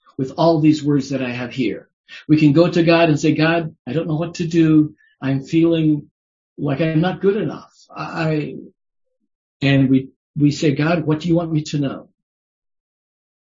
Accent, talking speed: American, 185 wpm